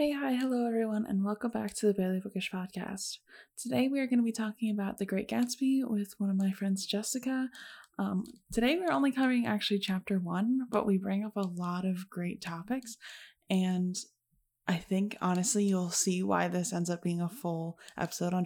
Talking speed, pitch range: 200 wpm, 180-220 Hz